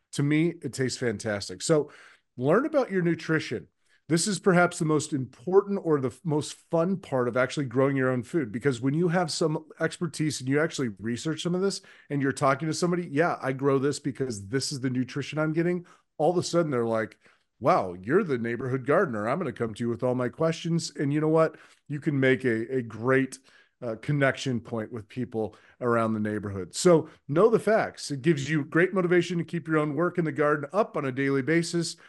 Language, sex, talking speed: English, male, 220 wpm